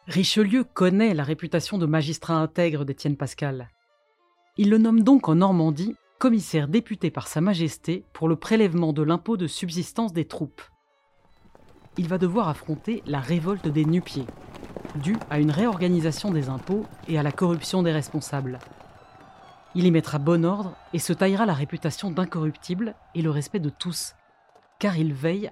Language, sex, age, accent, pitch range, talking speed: French, female, 30-49, French, 145-190 Hz, 160 wpm